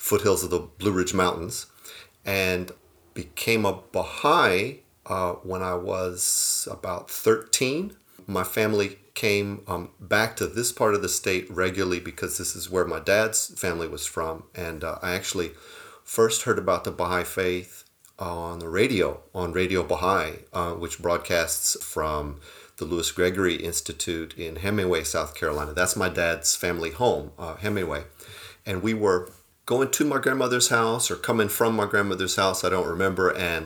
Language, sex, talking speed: English, male, 155 wpm